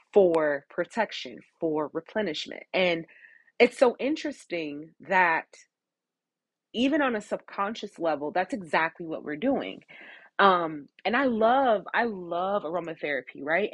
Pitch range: 155-215 Hz